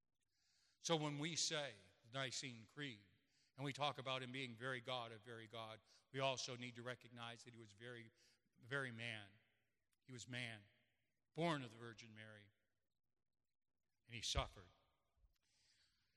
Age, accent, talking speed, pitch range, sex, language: 40-59, American, 145 wpm, 115-150 Hz, male, English